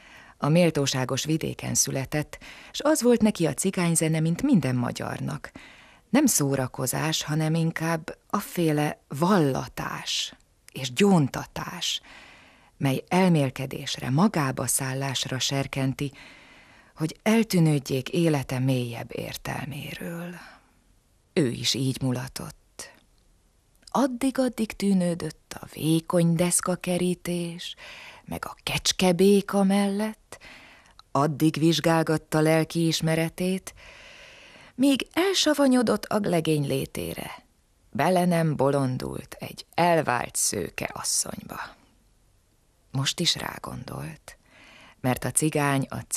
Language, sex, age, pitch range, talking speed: Hungarian, female, 30-49, 135-175 Hz, 85 wpm